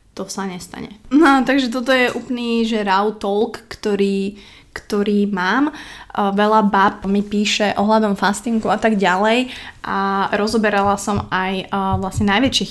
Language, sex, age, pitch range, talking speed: Slovak, female, 20-39, 195-220 Hz, 135 wpm